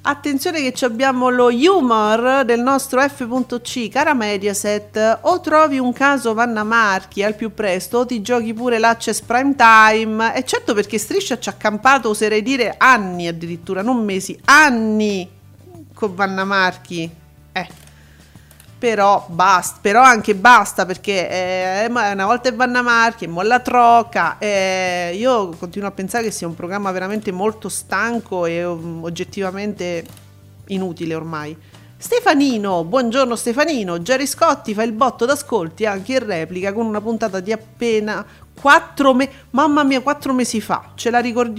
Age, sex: 40-59, female